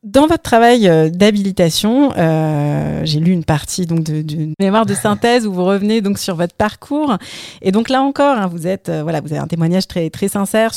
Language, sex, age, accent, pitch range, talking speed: French, female, 30-49, French, 175-215 Hz, 210 wpm